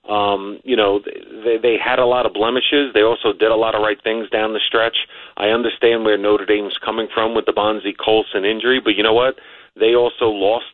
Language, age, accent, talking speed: English, 40-59, American, 220 wpm